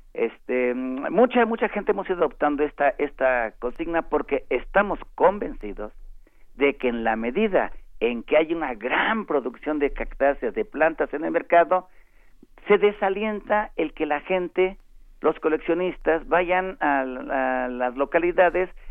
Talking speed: 140 wpm